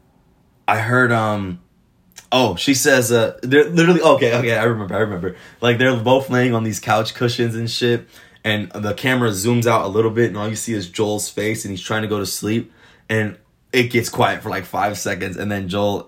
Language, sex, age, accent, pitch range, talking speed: English, male, 20-39, American, 95-125 Hz, 215 wpm